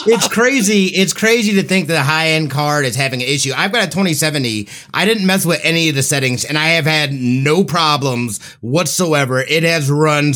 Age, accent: 30-49, American